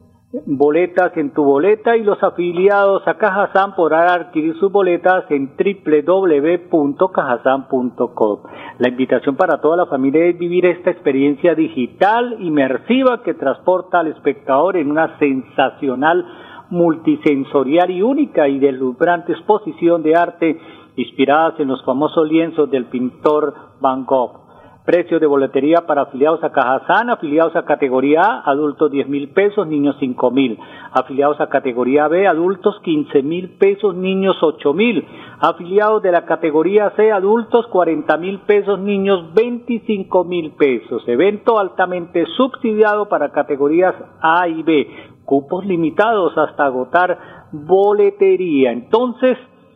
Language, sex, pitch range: Spanish, male, 145-195 Hz